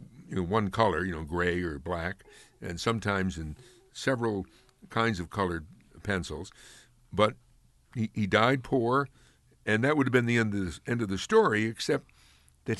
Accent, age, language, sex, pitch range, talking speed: American, 60-79, English, male, 95-125 Hz, 175 wpm